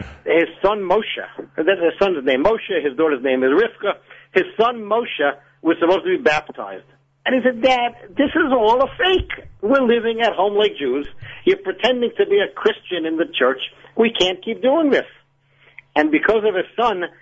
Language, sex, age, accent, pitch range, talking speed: English, male, 50-69, American, 150-220 Hz, 190 wpm